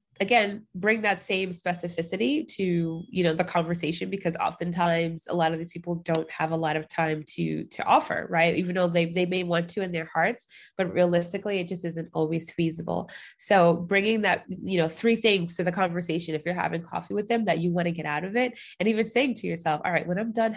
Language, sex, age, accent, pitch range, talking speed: English, female, 20-39, American, 170-200 Hz, 230 wpm